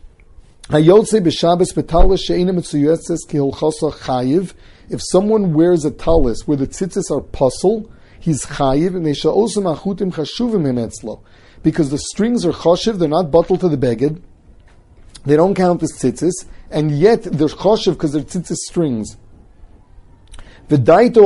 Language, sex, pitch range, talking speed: English, male, 140-175 Hz, 135 wpm